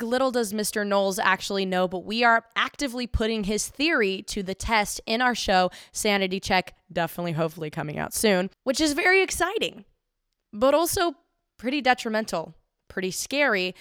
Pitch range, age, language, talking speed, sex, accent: 185-235 Hz, 20-39, English, 155 wpm, female, American